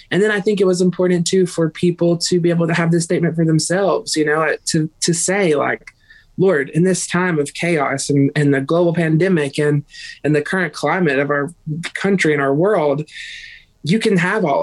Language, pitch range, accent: English, 150-185 Hz, American